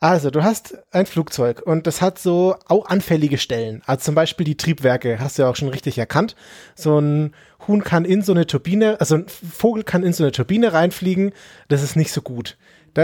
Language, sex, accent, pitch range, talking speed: German, male, German, 145-185 Hz, 215 wpm